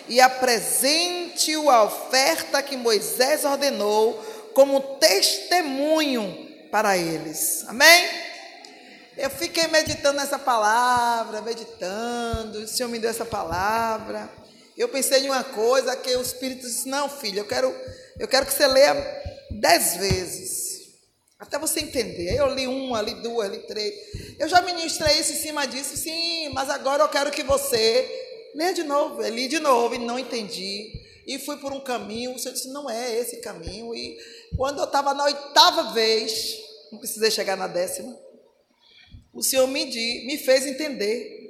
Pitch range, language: 230-310 Hz, Portuguese